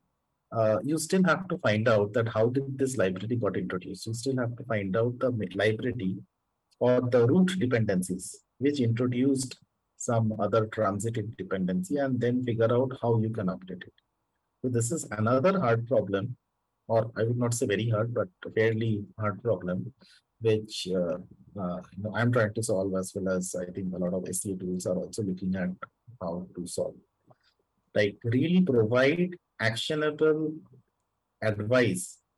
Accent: Indian